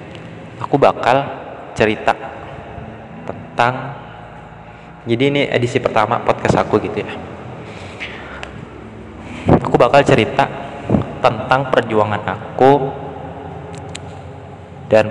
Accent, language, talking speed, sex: native, Indonesian, 75 wpm, male